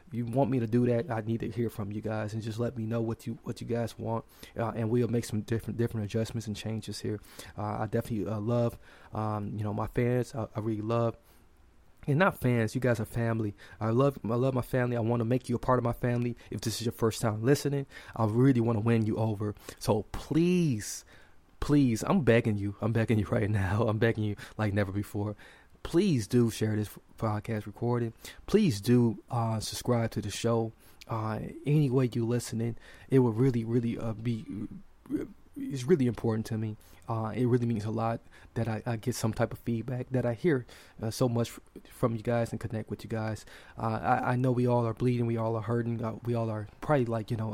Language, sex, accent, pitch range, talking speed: English, male, American, 110-120 Hz, 225 wpm